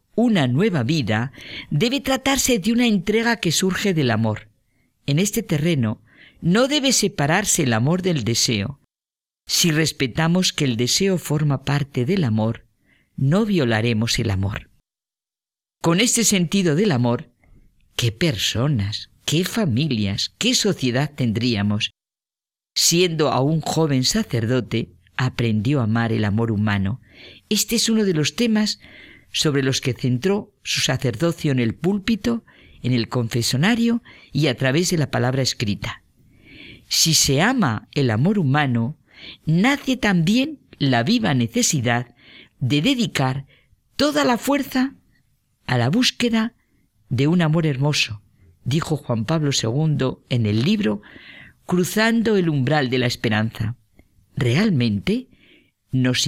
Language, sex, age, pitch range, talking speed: Spanish, female, 50-69, 120-195 Hz, 130 wpm